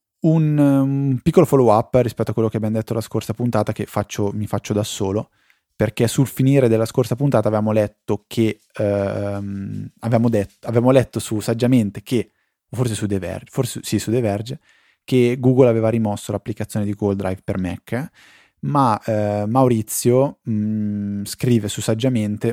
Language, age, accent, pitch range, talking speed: Italian, 20-39, native, 100-120 Hz, 160 wpm